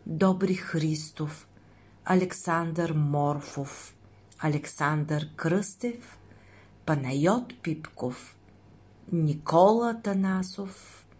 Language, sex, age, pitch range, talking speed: Bulgarian, female, 40-59, 140-185 Hz, 55 wpm